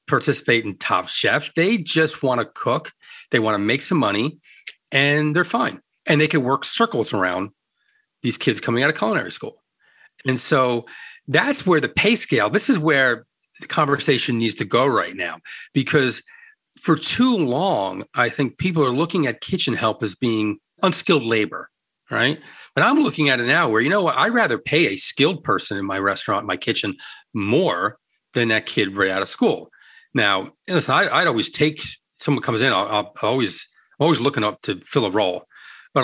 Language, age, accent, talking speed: English, 40-59, American, 195 wpm